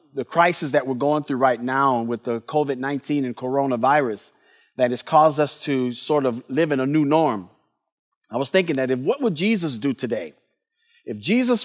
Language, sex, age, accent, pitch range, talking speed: English, male, 50-69, American, 150-210 Hz, 190 wpm